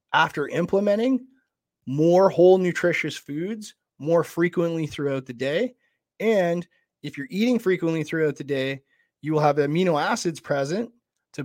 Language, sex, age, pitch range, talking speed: English, male, 30-49, 150-195 Hz, 135 wpm